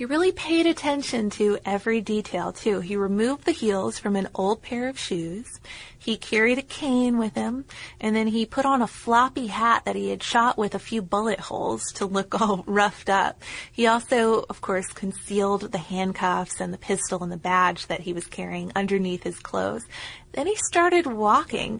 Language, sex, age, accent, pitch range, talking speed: English, female, 20-39, American, 195-240 Hz, 195 wpm